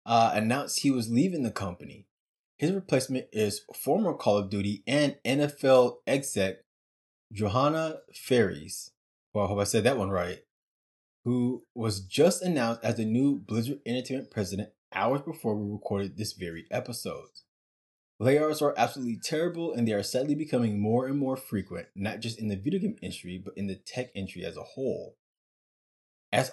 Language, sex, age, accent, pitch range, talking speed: English, male, 20-39, American, 100-130 Hz, 165 wpm